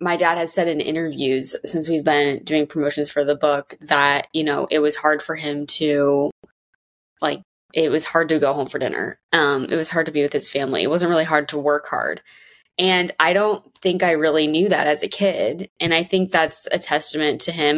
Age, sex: 20-39, female